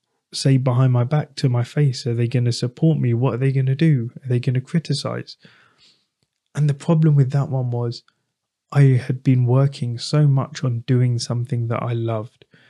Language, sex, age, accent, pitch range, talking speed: English, male, 20-39, British, 120-140 Hz, 205 wpm